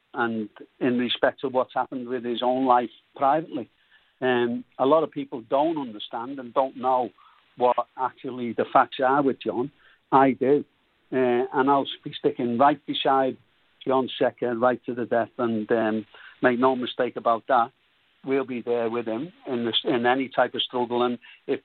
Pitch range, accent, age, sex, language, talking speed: 120-135 Hz, British, 60-79, male, English, 190 wpm